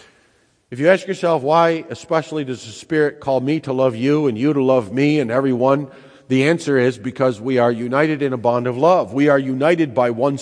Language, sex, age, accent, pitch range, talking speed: English, male, 50-69, American, 100-140 Hz, 220 wpm